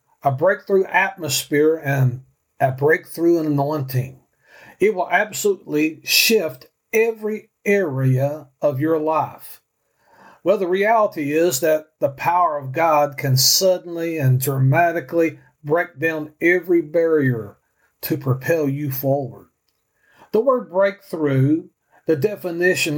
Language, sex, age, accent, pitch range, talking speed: English, male, 50-69, American, 140-180 Hz, 110 wpm